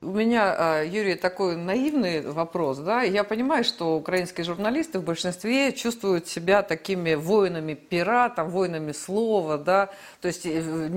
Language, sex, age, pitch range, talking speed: Russian, female, 50-69, 175-230 Hz, 125 wpm